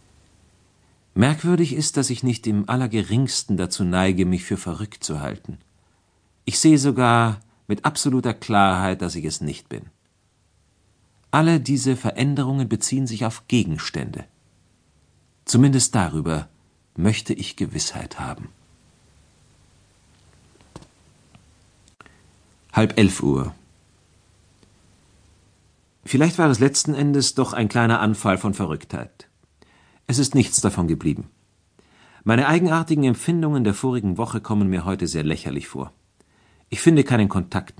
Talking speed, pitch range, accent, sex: 115 wpm, 90-130 Hz, German, male